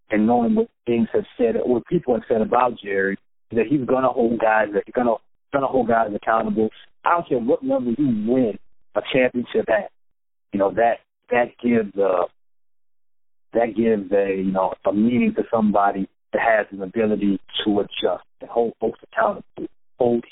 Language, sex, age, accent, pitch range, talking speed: English, male, 40-59, American, 110-145 Hz, 180 wpm